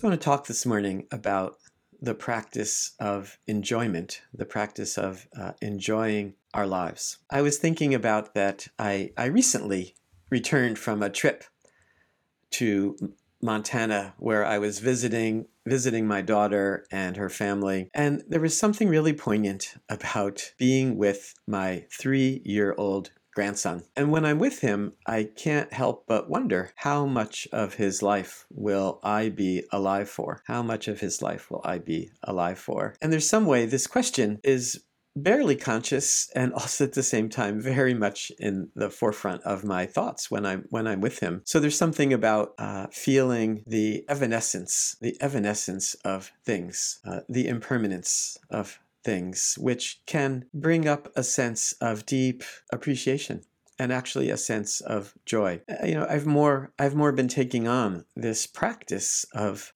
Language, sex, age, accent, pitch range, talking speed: English, male, 50-69, American, 100-135 Hz, 155 wpm